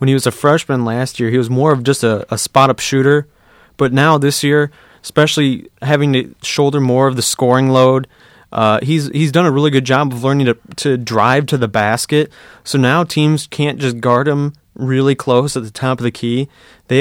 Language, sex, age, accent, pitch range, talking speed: English, male, 30-49, American, 115-140 Hz, 215 wpm